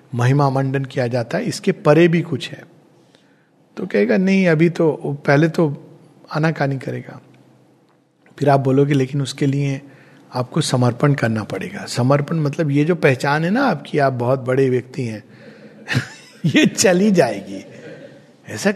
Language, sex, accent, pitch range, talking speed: Hindi, male, native, 140-205 Hz, 150 wpm